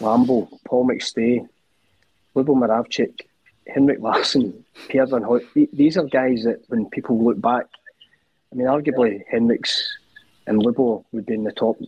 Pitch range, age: 115-140 Hz, 30-49